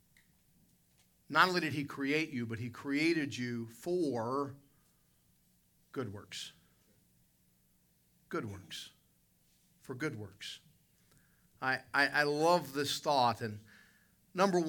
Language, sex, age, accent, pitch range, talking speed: English, male, 50-69, American, 105-140 Hz, 105 wpm